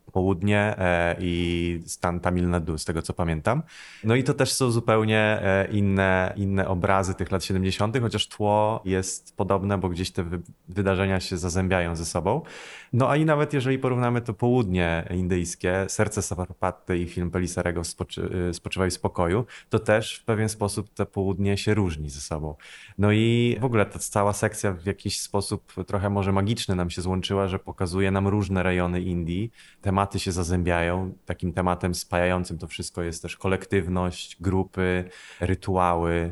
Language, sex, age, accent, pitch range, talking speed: Polish, male, 20-39, native, 90-100 Hz, 165 wpm